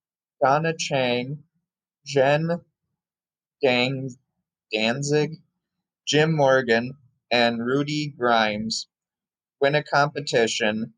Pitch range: 115-150 Hz